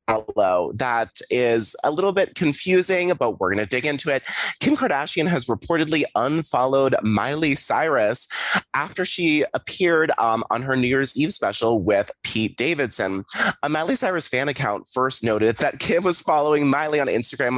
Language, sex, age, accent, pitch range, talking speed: English, male, 20-39, American, 110-155 Hz, 165 wpm